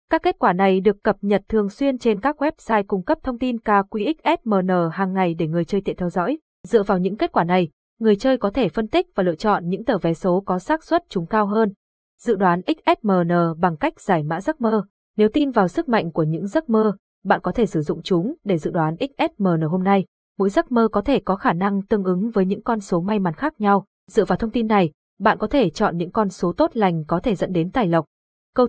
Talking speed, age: 250 wpm, 20-39